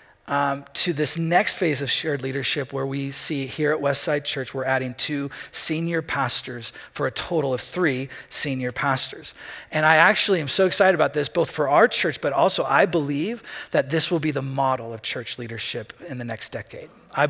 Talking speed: 200 wpm